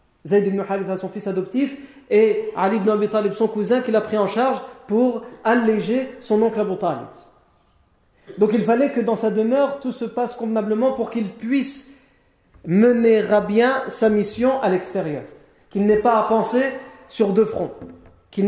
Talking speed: 180 wpm